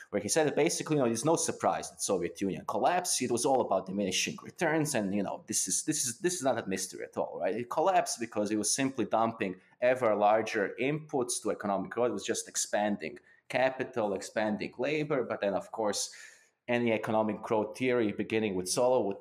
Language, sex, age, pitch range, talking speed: English, male, 20-39, 95-120 Hz, 210 wpm